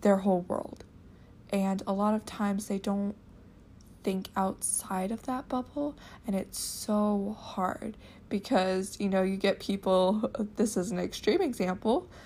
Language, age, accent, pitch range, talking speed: English, 20-39, American, 195-245 Hz, 145 wpm